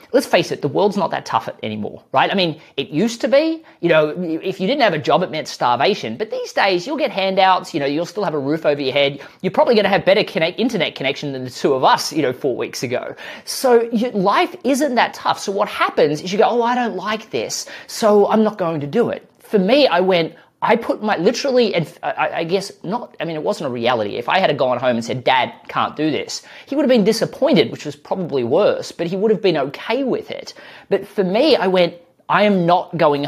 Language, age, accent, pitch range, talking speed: English, 30-49, Australian, 155-230 Hz, 250 wpm